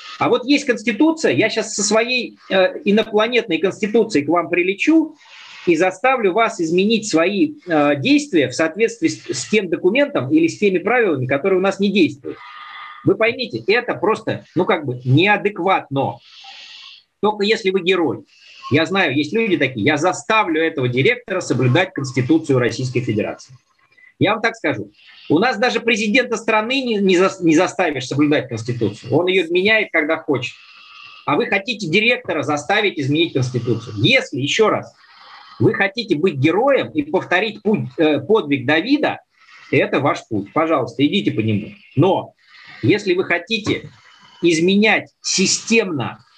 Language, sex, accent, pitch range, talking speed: Russian, male, native, 150-225 Hz, 145 wpm